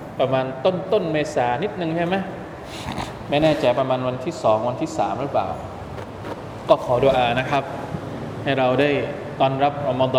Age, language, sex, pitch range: 20-39, Thai, male, 130-155 Hz